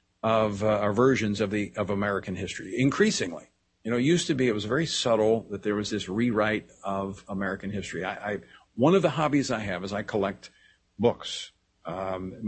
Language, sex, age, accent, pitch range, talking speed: English, male, 50-69, American, 105-140 Hz, 195 wpm